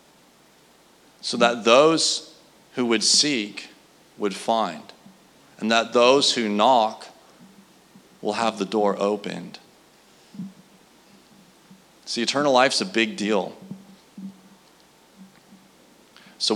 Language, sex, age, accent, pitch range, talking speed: English, male, 40-59, American, 105-125 Hz, 90 wpm